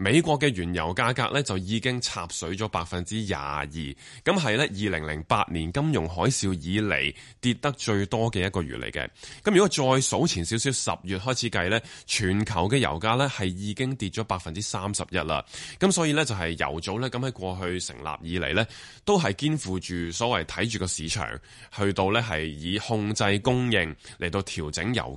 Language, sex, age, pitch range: Chinese, male, 20-39, 85-120 Hz